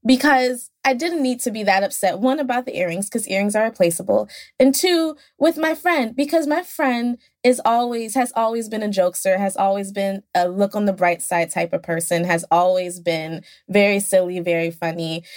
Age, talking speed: 20-39, 195 wpm